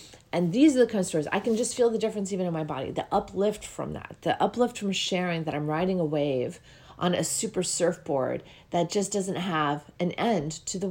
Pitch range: 165-225 Hz